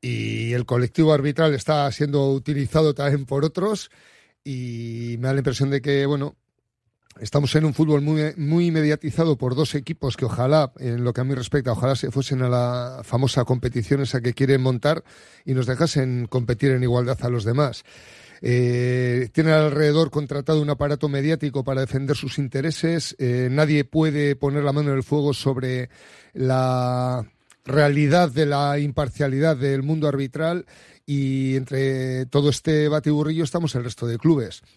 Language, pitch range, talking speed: Spanish, 130-155 Hz, 165 wpm